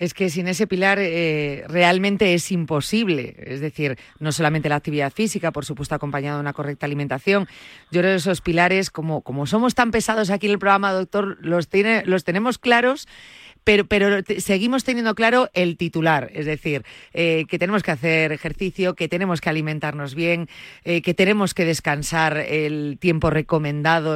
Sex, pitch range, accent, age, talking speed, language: female, 155-195 Hz, Spanish, 30-49, 175 wpm, Spanish